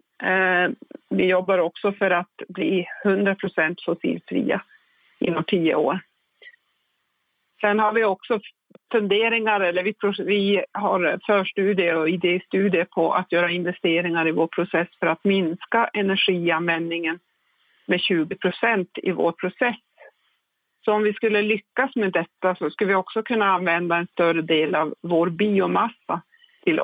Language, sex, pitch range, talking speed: Swedish, female, 170-210 Hz, 130 wpm